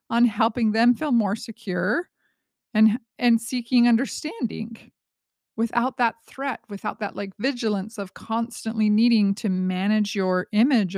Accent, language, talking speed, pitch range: American, English, 130 wpm, 190-240 Hz